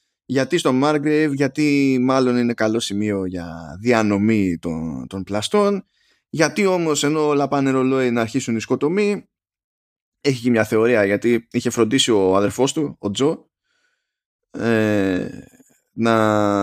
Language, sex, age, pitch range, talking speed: Greek, male, 20-39, 105-145 Hz, 130 wpm